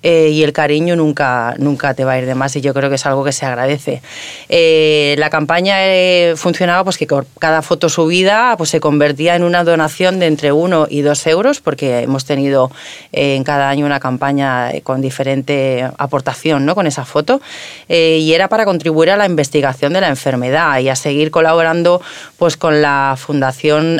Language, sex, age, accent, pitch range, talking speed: Spanish, female, 30-49, Spanish, 145-175 Hz, 180 wpm